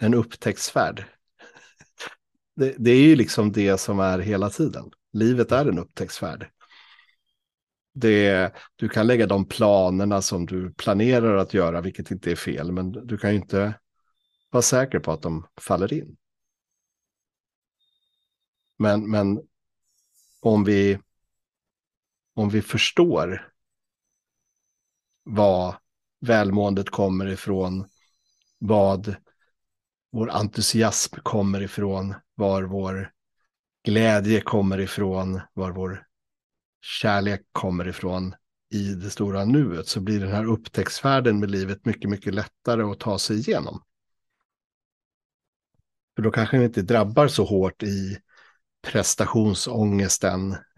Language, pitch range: Swedish, 95-110 Hz